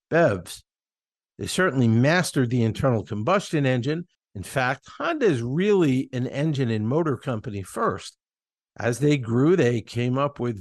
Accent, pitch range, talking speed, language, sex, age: American, 115-160 Hz, 145 wpm, English, male, 50-69